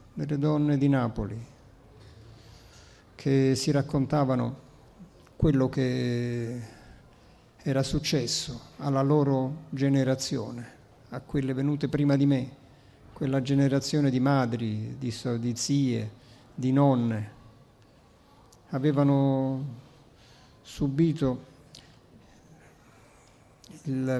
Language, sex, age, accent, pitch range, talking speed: Italian, male, 50-69, native, 120-140 Hz, 80 wpm